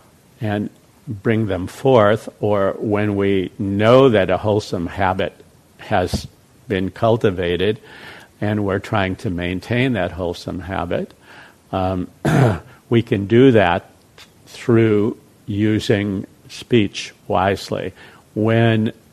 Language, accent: English, American